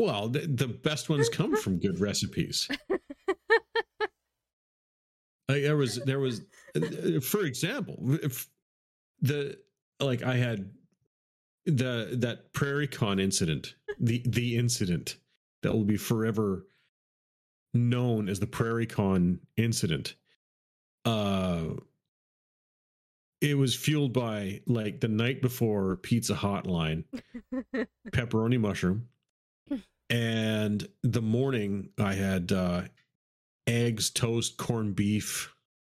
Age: 40-59